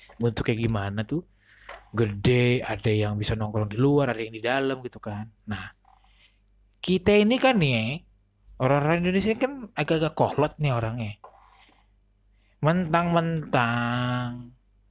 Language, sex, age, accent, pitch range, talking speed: Indonesian, male, 20-39, native, 110-145 Hz, 120 wpm